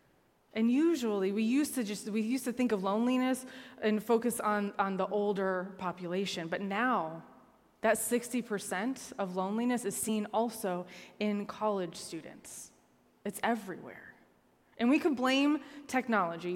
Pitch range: 190-245 Hz